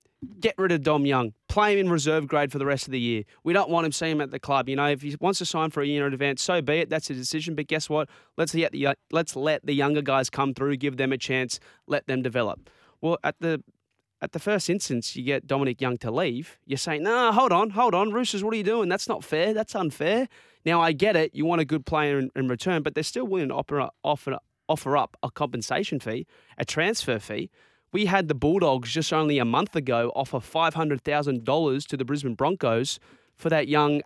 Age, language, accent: 20-39, English, Australian